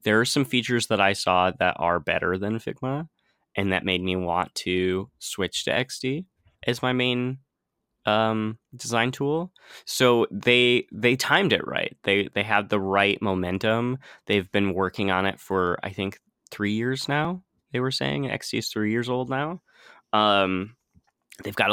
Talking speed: 170 wpm